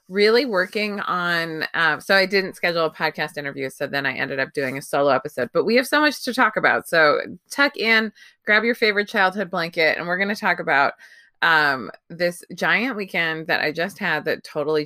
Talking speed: 210 wpm